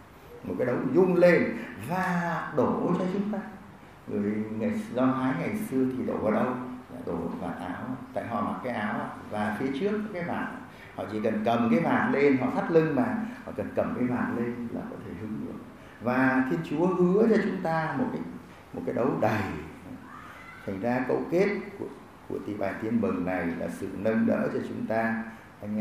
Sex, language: male, Vietnamese